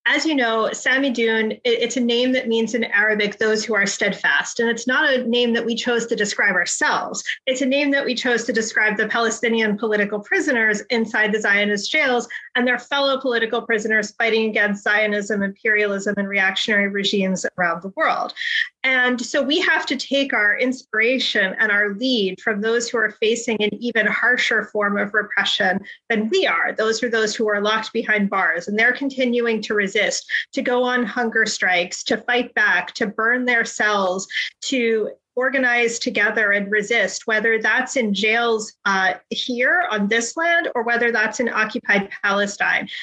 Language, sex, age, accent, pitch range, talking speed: English, female, 30-49, American, 215-245 Hz, 180 wpm